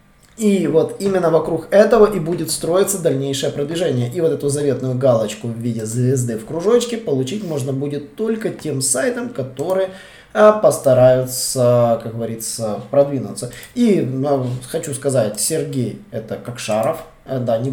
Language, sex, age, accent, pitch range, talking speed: Russian, male, 20-39, native, 130-175 Hz, 140 wpm